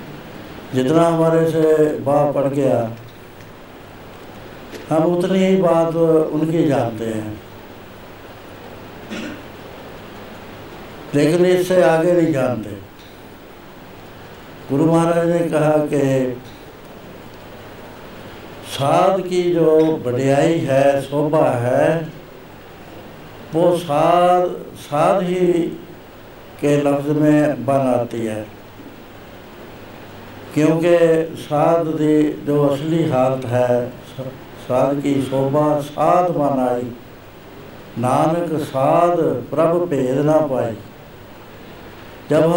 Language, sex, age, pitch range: Punjabi, male, 70-89, 125-165 Hz